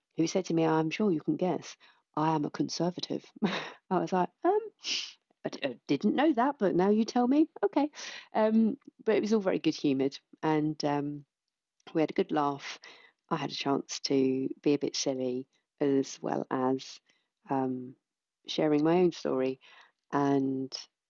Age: 40-59